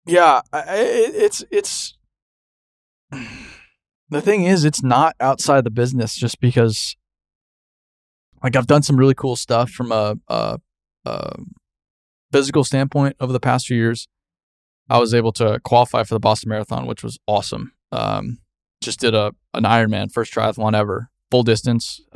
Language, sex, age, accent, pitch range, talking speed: English, male, 20-39, American, 110-135 Hz, 145 wpm